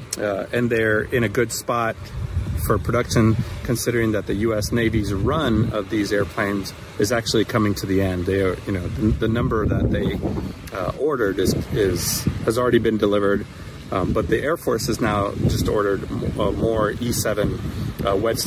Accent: American